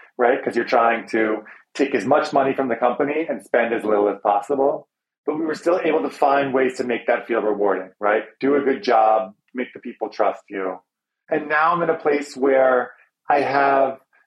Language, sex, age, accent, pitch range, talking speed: English, male, 30-49, American, 115-140 Hz, 210 wpm